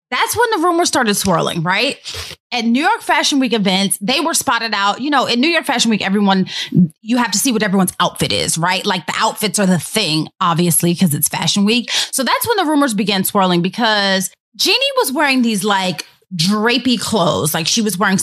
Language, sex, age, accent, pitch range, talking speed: English, female, 30-49, American, 190-265 Hz, 210 wpm